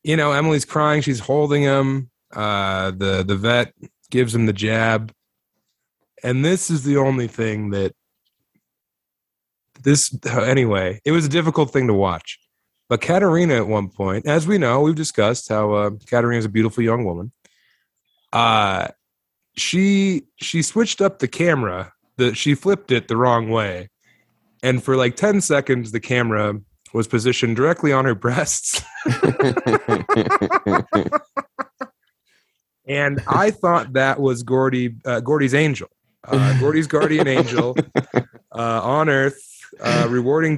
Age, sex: 30-49, male